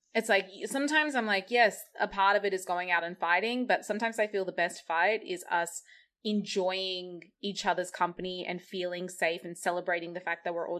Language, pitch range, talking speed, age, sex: English, 180-230 Hz, 210 wpm, 20-39, female